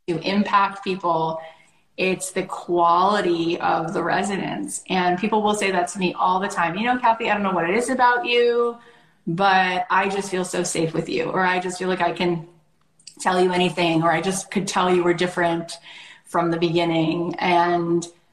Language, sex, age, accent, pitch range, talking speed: English, female, 30-49, American, 170-210 Hz, 195 wpm